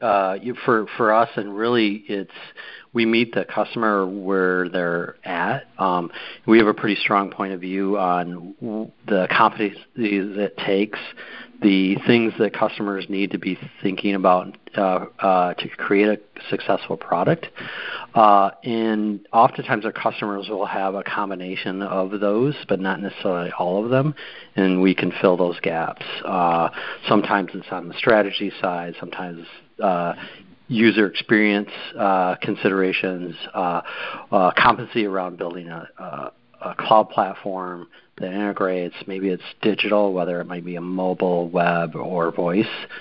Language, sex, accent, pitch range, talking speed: English, male, American, 90-105 Hz, 150 wpm